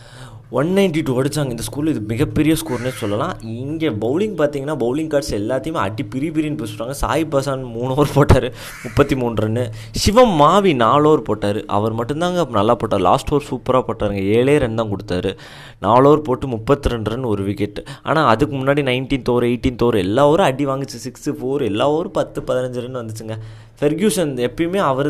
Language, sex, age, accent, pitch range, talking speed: Tamil, male, 20-39, native, 115-150 Hz, 165 wpm